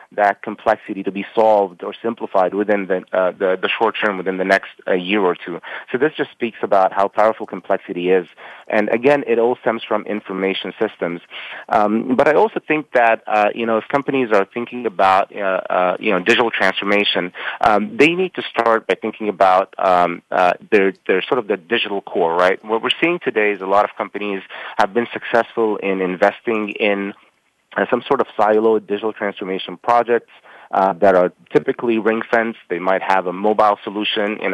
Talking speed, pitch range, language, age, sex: 195 wpm, 95-120 Hz, English, 30-49, male